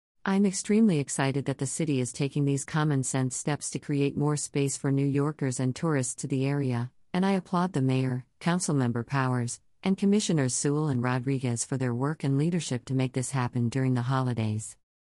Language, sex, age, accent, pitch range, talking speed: English, female, 50-69, American, 130-150 Hz, 185 wpm